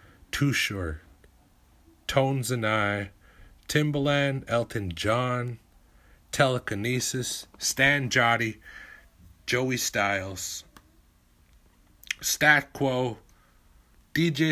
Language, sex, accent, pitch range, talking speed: English, male, American, 80-105 Hz, 65 wpm